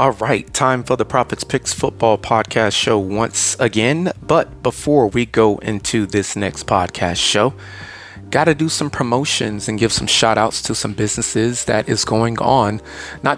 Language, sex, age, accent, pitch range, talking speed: English, male, 30-49, American, 110-135 Hz, 175 wpm